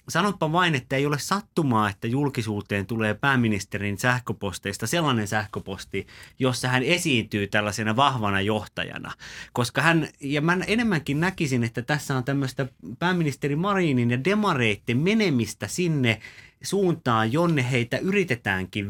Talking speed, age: 125 wpm, 30-49